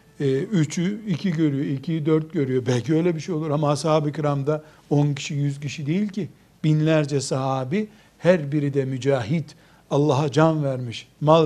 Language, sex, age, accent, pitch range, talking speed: Turkish, male, 60-79, native, 140-165 Hz, 150 wpm